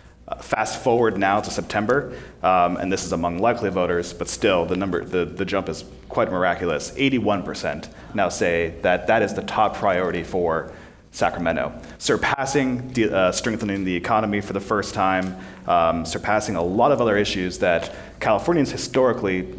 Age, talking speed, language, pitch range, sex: 30-49, 165 wpm, English, 90-110 Hz, male